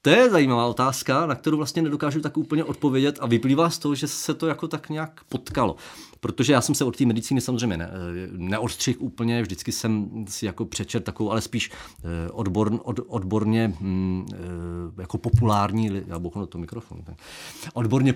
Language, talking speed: Czech, 140 wpm